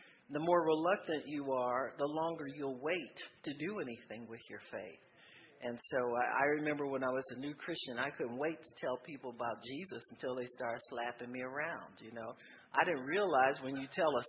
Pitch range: 130-160 Hz